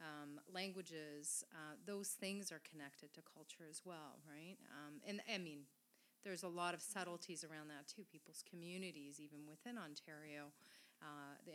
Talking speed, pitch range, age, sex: 160 wpm, 155-195 Hz, 30-49, female